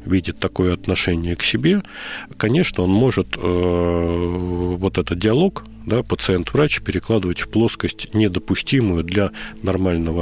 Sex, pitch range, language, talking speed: male, 90-110 Hz, Russian, 110 wpm